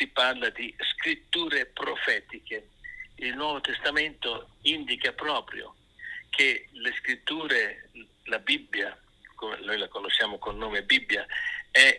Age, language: 50-69, Italian